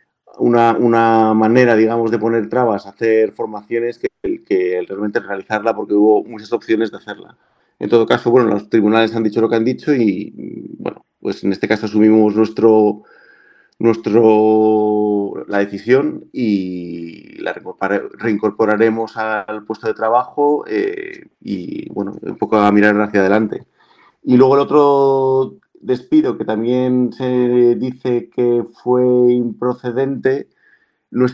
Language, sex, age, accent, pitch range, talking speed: Spanish, male, 40-59, Spanish, 105-125 Hz, 140 wpm